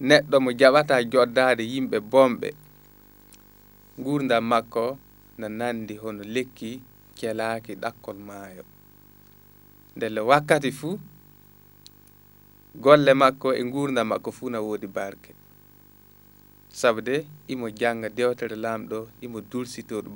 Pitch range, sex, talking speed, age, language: 100-125 Hz, male, 95 wpm, 20-39, English